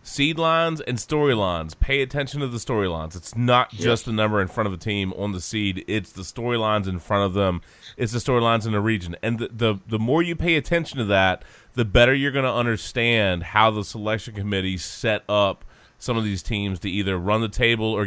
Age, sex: 30-49, male